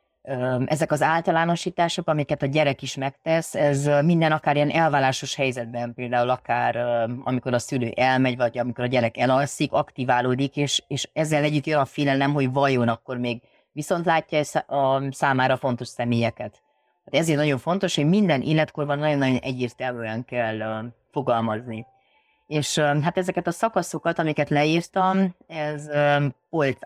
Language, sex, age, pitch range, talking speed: Hungarian, female, 30-49, 125-150 Hz, 140 wpm